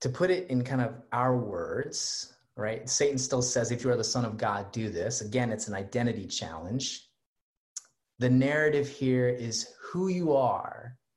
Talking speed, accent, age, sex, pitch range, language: 175 wpm, American, 30-49, male, 110-130 Hz, English